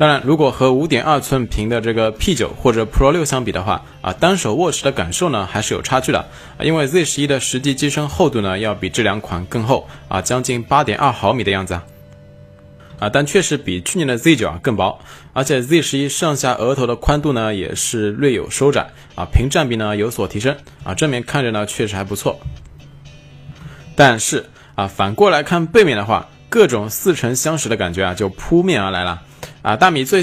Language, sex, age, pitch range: Chinese, male, 20-39, 100-140 Hz